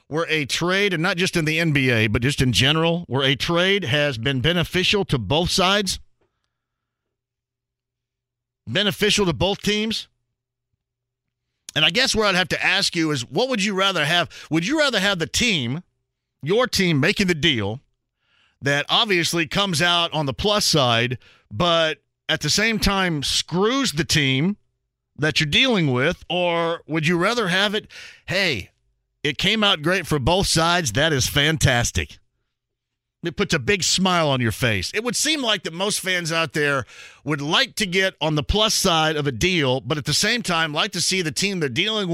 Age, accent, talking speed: 50-69, American, 185 wpm